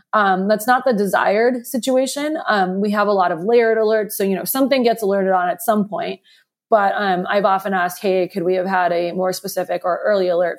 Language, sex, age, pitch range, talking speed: English, female, 20-39, 180-215 Hz, 225 wpm